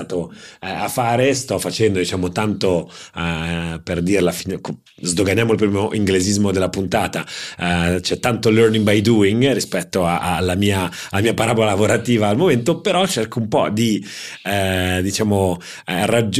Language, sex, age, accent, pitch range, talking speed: Italian, male, 30-49, native, 95-115 Hz, 130 wpm